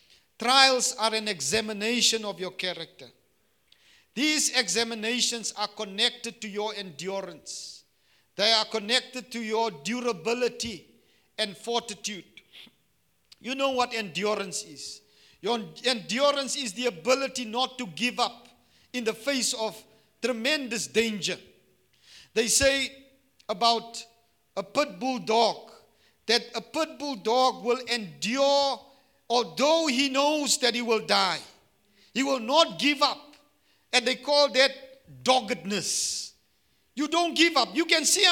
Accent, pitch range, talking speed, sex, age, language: South African, 225-290 Hz, 125 wpm, male, 50-69, English